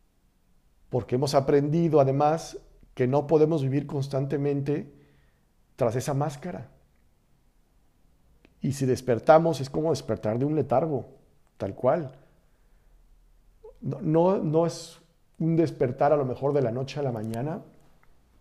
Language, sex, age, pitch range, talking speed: Spanish, male, 50-69, 120-150 Hz, 120 wpm